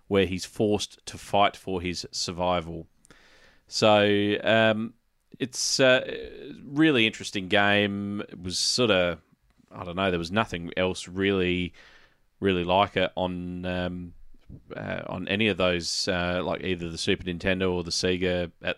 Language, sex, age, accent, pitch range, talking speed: English, male, 30-49, Australian, 90-100 Hz, 155 wpm